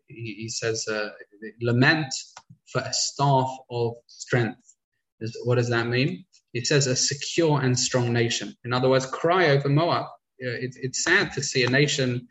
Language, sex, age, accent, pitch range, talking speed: English, male, 20-39, British, 125-150 Hz, 170 wpm